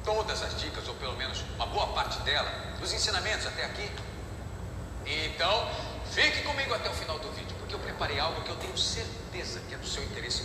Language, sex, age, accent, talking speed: Portuguese, male, 40-59, Brazilian, 200 wpm